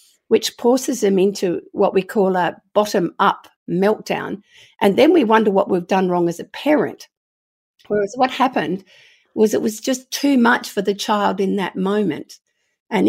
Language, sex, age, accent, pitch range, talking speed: English, female, 50-69, Australian, 190-225 Hz, 175 wpm